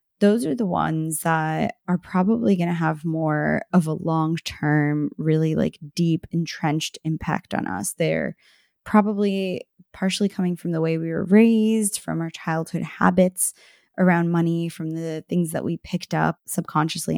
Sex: female